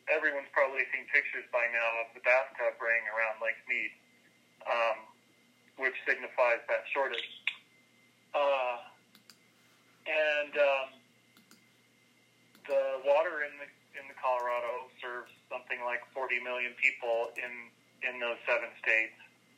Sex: male